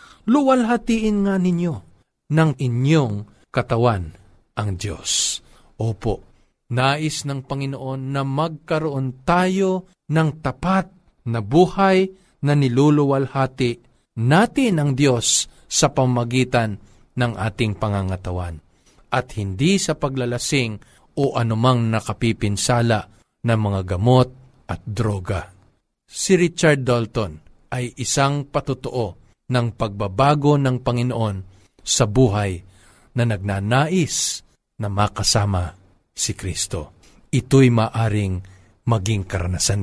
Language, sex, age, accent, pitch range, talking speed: Filipino, male, 50-69, native, 110-150 Hz, 95 wpm